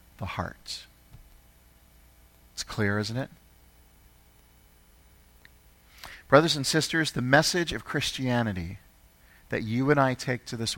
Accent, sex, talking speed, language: American, male, 110 wpm, English